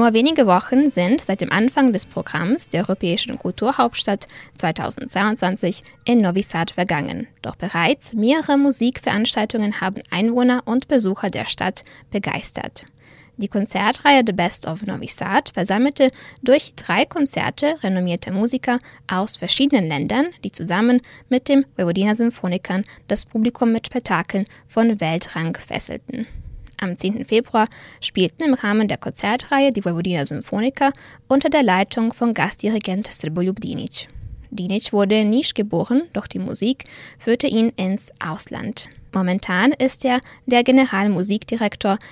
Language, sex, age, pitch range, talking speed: German, female, 10-29, 190-255 Hz, 130 wpm